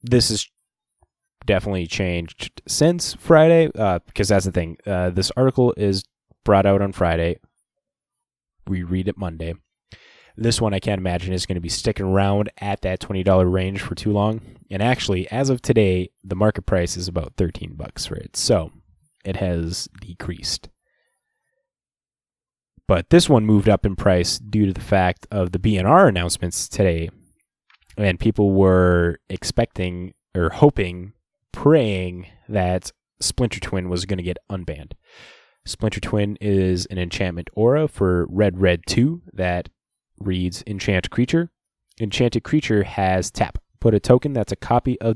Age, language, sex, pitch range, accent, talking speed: 20-39, English, male, 90-115 Hz, American, 155 wpm